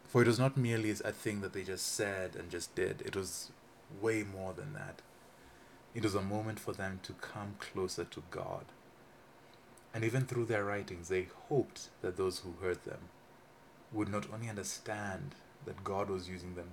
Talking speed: 185 wpm